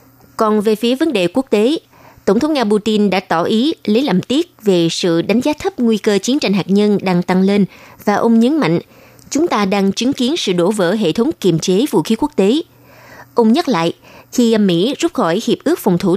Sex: female